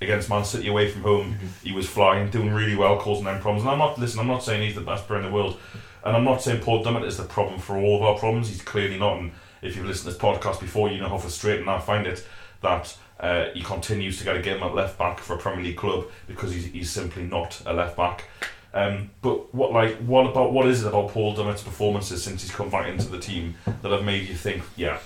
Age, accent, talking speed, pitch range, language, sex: 30-49, British, 265 wpm, 95-115 Hz, English, male